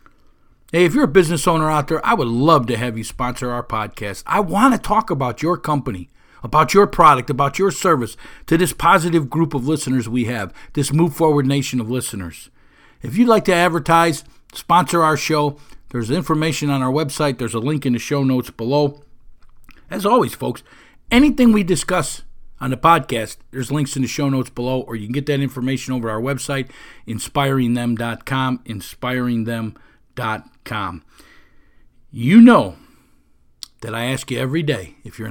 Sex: male